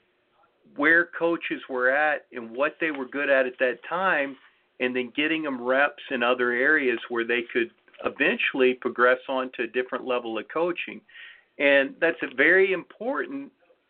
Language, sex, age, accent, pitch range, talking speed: English, male, 50-69, American, 125-165 Hz, 160 wpm